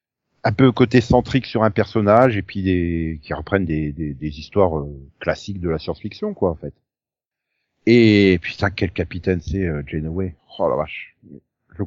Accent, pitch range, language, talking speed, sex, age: French, 95-130 Hz, French, 180 wpm, male, 40-59